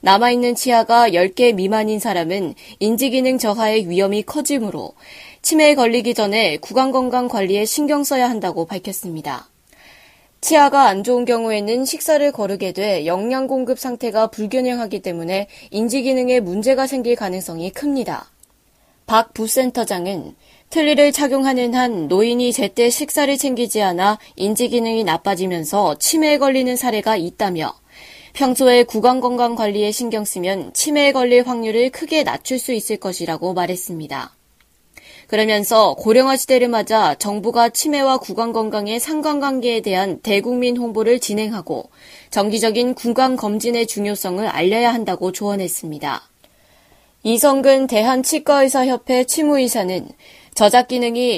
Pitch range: 205-255 Hz